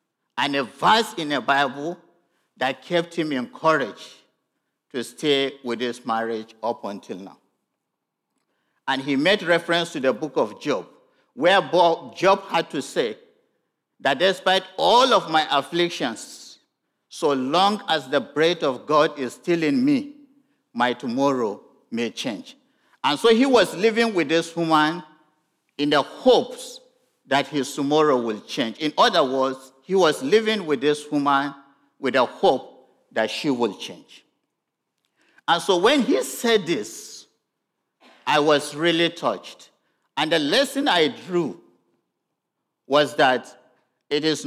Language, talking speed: English, 140 wpm